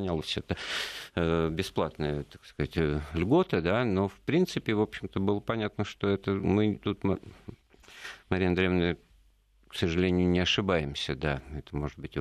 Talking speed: 135 wpm